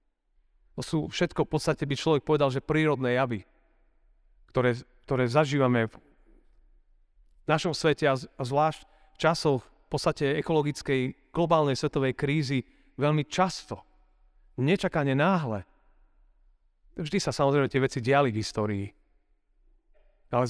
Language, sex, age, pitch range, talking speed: Slovak, male, 40-59, 115-150 Hz, 125 wpm